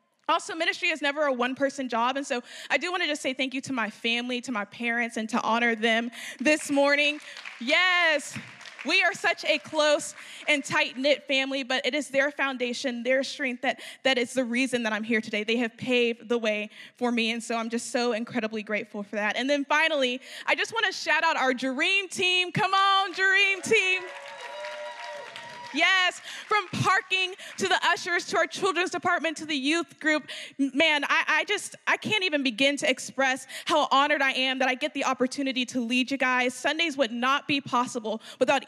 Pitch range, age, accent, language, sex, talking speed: 240-305 Hz, 10-29, American, English, female, 200 wpm